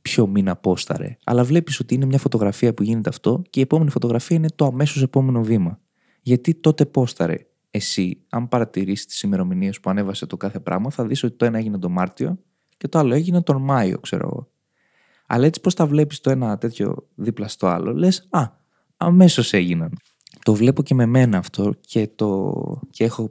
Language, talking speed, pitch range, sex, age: Greek, 195 wpm, 105-150 Hz, male, 20-39